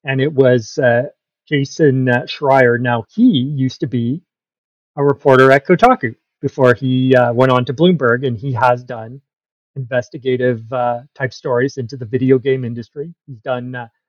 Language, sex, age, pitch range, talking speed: English, male, 40-59, 125-145 Hz, 165 wpm